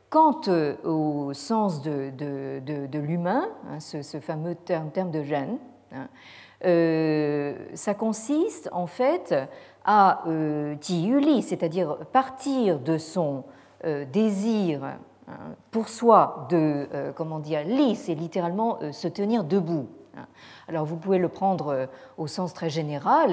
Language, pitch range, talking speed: French, 155-210 Hz, 135 wpm